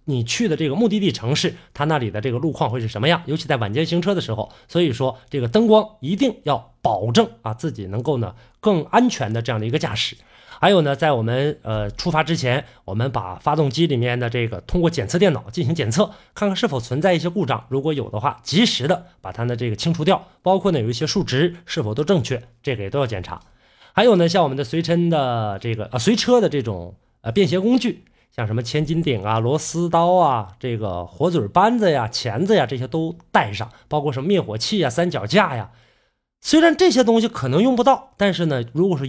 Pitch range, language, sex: 120-185 Hz, Chinese, male